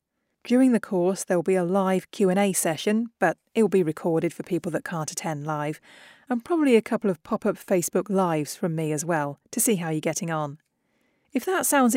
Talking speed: 210 wpm